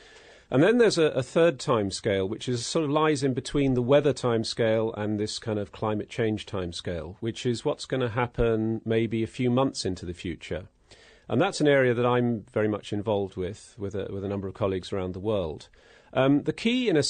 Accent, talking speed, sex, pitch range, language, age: British, 220 wpm, male, 100-125 Hz, English, 40-59